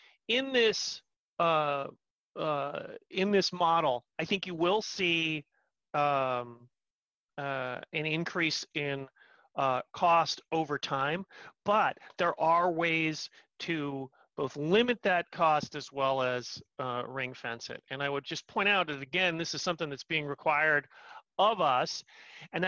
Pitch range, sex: 140-175 Hz, male